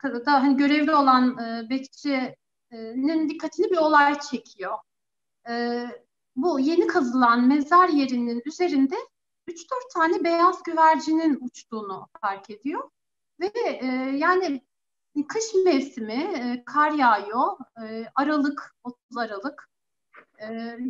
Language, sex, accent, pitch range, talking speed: Turkish, female, native, 240-335 Hz, 105 wpm